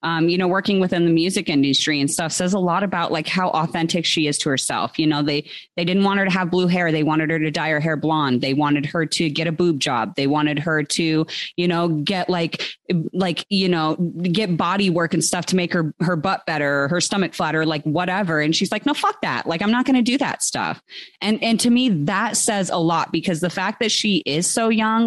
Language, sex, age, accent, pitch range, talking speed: English, female, 30-49, American, 155-195 Hz, 250 wpm